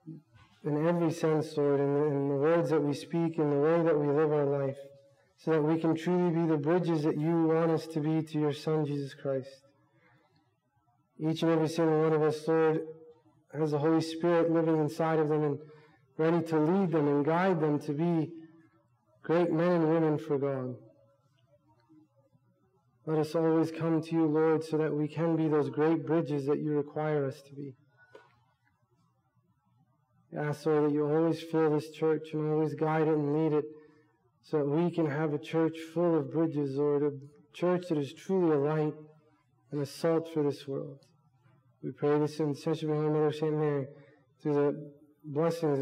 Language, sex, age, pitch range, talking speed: Arabic, male, 20-39, 140-160 Hz, 190 wpm